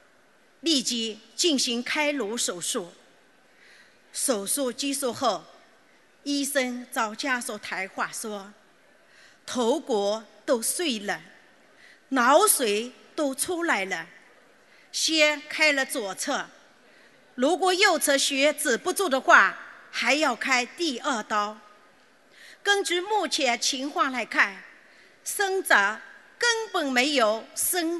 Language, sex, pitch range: Chinese, female, 235-330 Hz